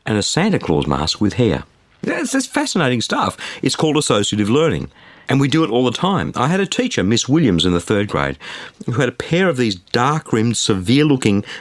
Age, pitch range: 50-69, 95-140 Hz